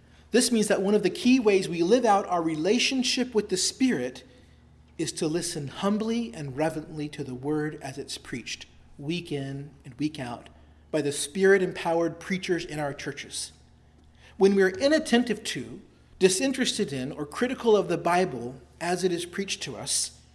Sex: male